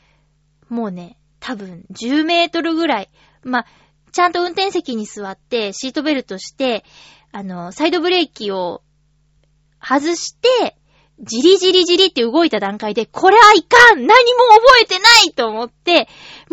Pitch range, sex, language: 210-350 Hz, female, Japanese